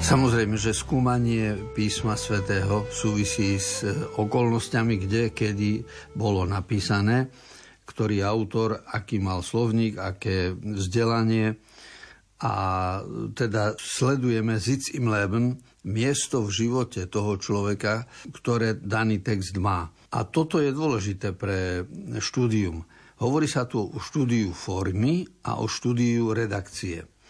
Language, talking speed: Slovak, 110 wpm